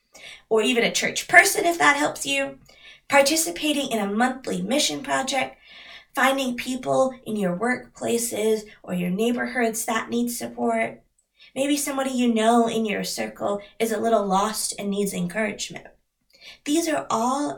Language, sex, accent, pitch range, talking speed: English, female, American, 180-250 Hz, 145 wpm